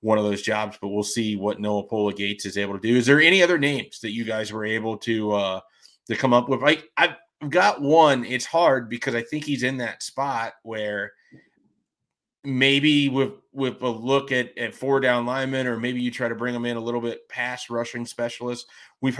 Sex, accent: male, American